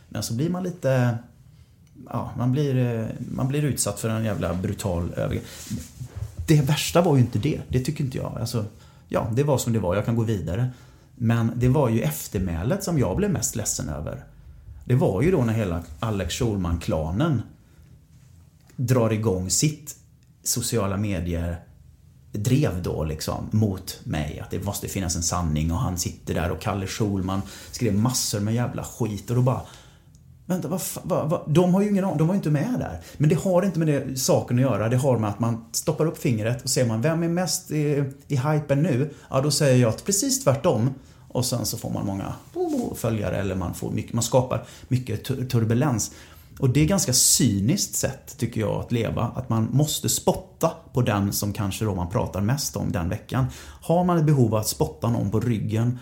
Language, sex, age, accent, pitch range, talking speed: Swedish, male, 30-49, native, 100-140 Hz, 195 wpm